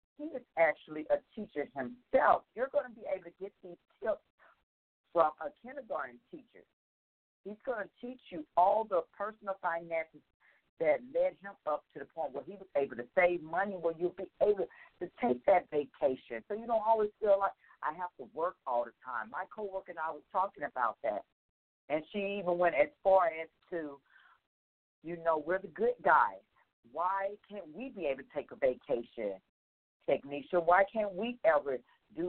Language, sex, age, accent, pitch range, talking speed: English, female, 50-69, American, 155-225 Hz, 185 wpm